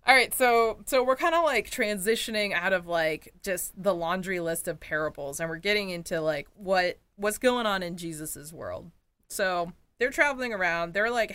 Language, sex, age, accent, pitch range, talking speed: English, female, 20-39, American, 170-225 Hz, 185 wpm